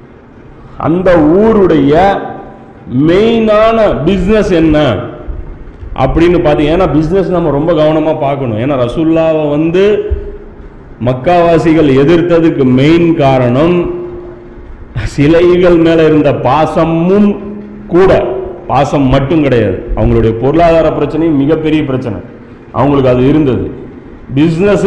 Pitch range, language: 140-180 Hz, Tamil